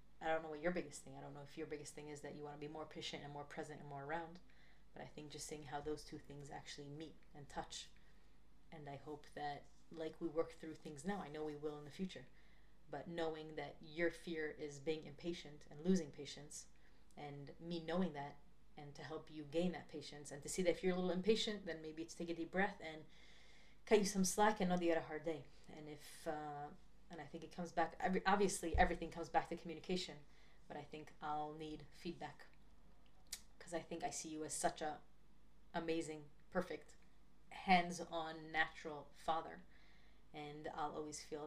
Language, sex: Hebrew, female